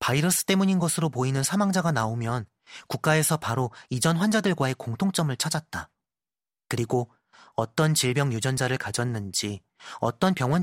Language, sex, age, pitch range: Korean, male, 30-49, 125-190 Hz